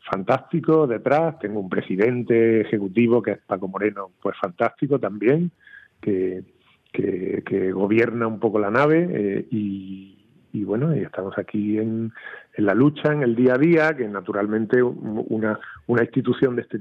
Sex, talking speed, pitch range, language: male, 150 wpm, 100-130 Hz, Spanish